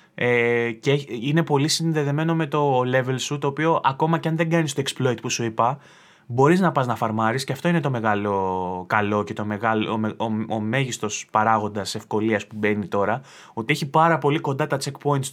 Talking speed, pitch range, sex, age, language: 200 wpm, 115-160 Hz, male, 20-39, Greek